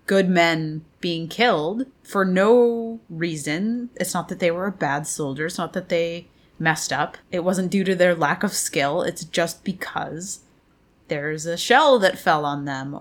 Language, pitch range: English, 150-185 Hz